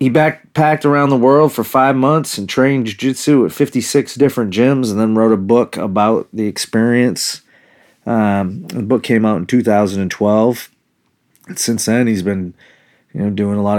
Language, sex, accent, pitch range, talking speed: English, male, American, 105-125 Hz, 175 wpm